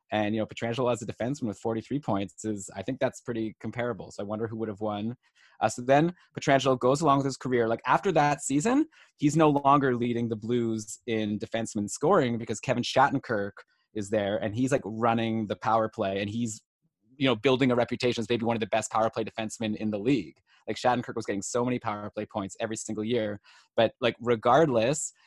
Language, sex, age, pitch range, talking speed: English, male, 20-39, 110-130 Hz, 215 wpm